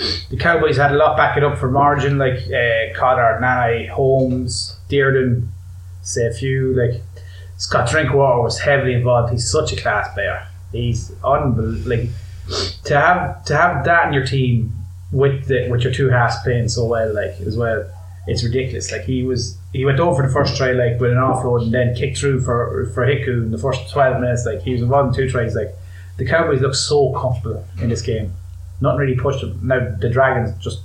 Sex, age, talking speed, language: male, 20-39, 200 wpm, English